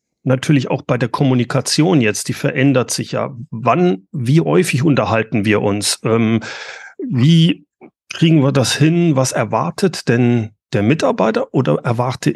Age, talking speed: 40-59, 140 wpm